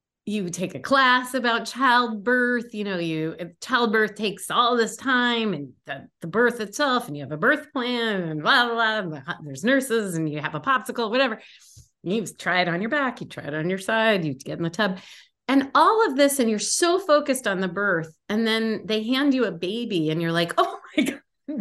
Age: 30-49